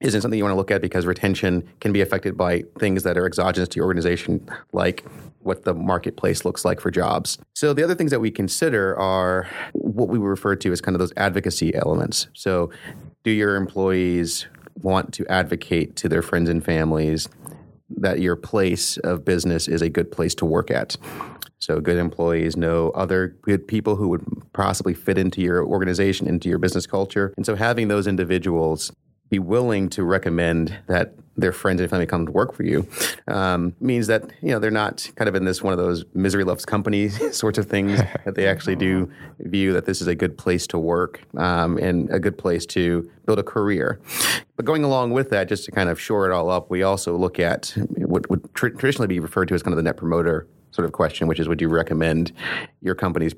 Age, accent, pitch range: 30-49, American, 85-100 Hz